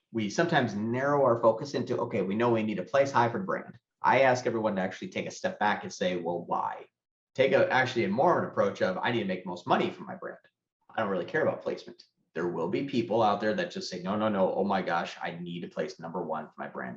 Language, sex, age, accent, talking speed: English, male, 30-49, American, 270 wpm